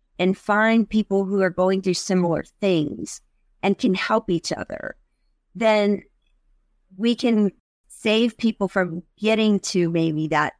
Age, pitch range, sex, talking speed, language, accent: 40-59, 175-205 Hz, female, 135 wpm, English, American